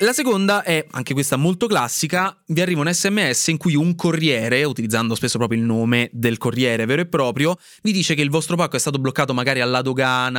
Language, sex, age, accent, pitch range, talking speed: Italian, male, 20-39, native, 125-170 Hz, 215 wpm